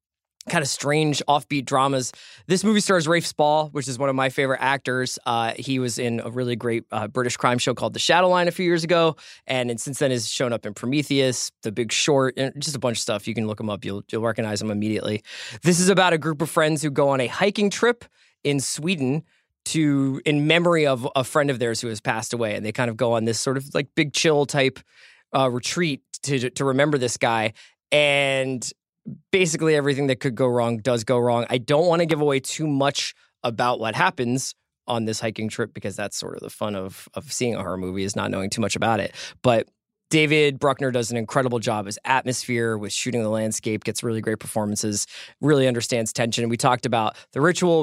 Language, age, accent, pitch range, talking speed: English, 20-39, American, 115-145 Hz, 225 wpm